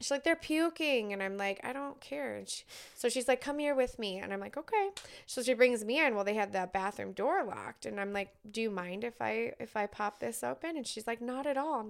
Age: 20-39